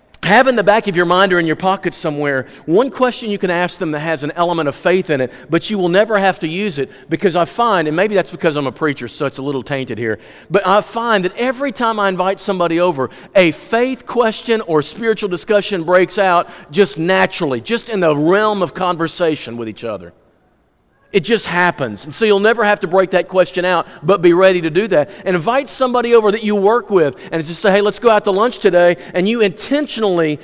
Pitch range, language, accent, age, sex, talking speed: 170-215 Hz, English, American, 40-59, male, 235 wpm